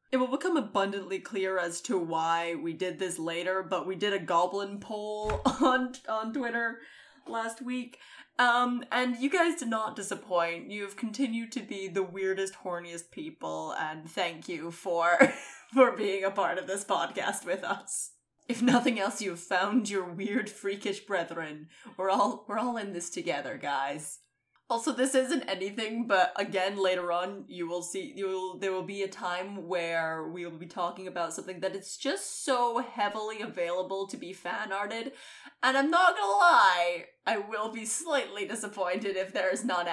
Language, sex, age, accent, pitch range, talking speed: English, female, 20-39, American, 180-250 Hz, 180 wpm